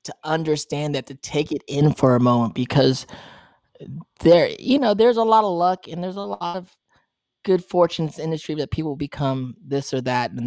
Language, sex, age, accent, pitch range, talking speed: English, male, 20-39, American, 130-165 Hz, 200 wpm